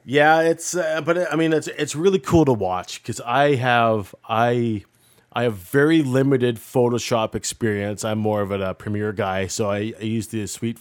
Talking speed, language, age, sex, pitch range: 195 wpm, English, 30-49, male, 105-125 Hz